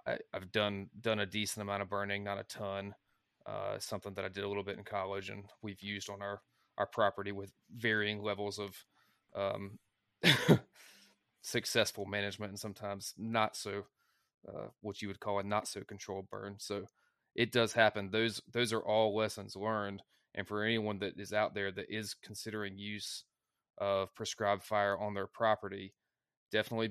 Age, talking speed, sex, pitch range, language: 20-39, 170 wpm, male, 100-105 Hz, English